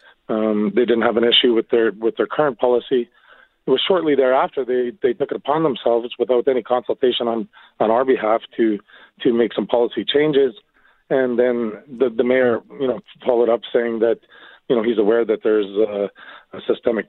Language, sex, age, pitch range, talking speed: English, male, 40-59, 110-135 Hz, 195 wpm